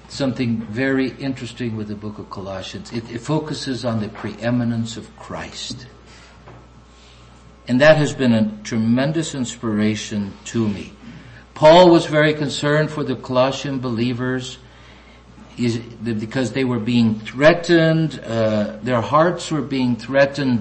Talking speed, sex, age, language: 130 wpm, male, 60-79, English